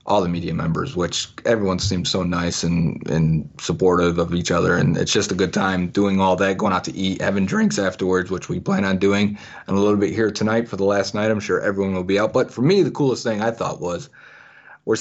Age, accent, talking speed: 30-49, American, 250 wpm